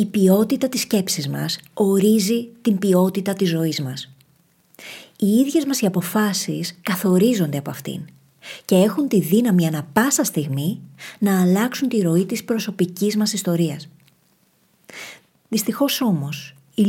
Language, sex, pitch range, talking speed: Greek, female, 165-225 Hz, 130 wpm